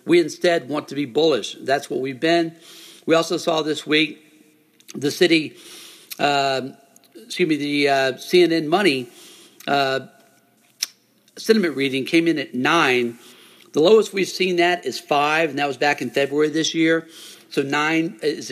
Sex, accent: male, American